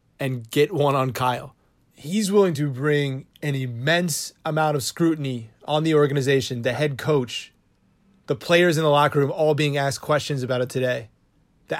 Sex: male